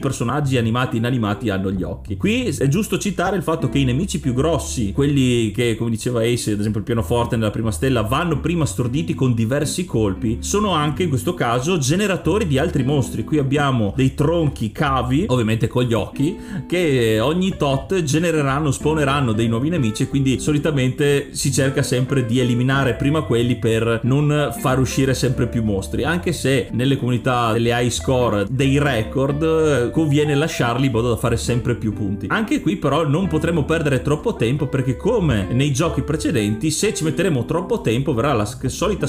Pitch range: 120-155 Hz